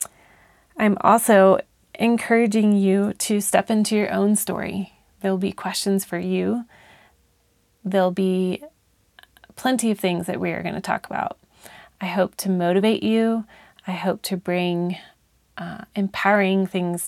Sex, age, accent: female, 30-49, American